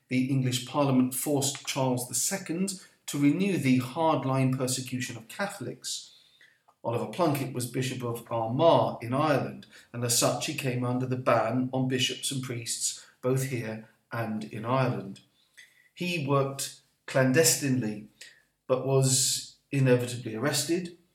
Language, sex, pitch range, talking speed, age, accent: English, male, 120-145 Hz, 130 wpm, 40-59, British